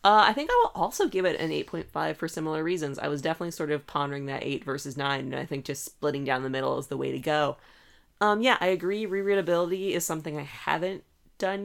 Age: 20-39